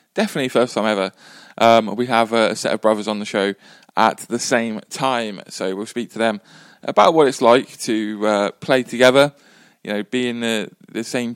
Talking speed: 195 wpm